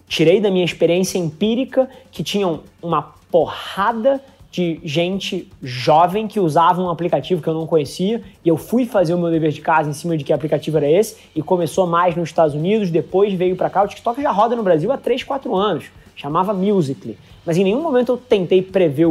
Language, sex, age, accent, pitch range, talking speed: Portuguese, male, 20-39, Brazilian, 155-190 Hz, 205 wpm